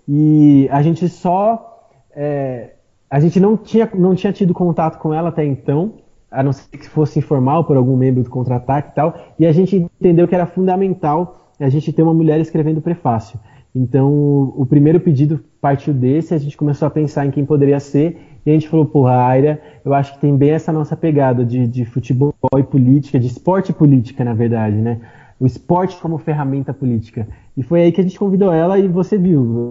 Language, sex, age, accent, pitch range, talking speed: Portuguese, male, 20-39, Brazilian, 135-170 Hz, 205 wpm